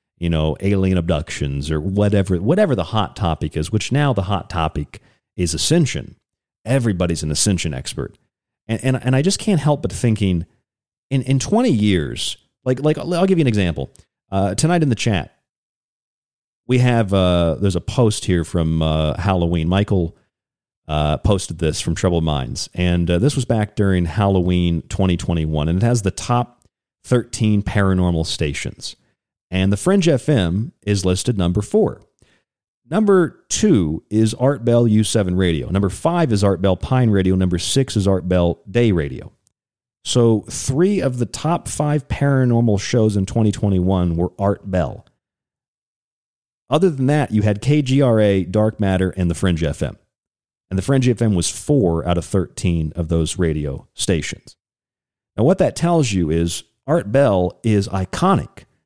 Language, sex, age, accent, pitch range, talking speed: English, male, 40-59, American, 90-125 Hz, 160 wpm